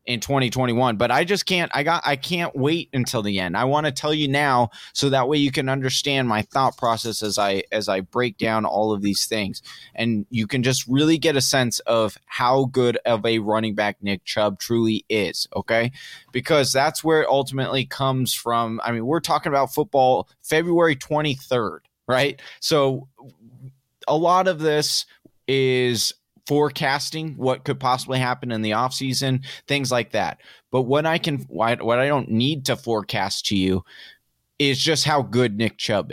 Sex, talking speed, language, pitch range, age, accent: male, 185 wpm, English, 115-145 Hz, 20-39, American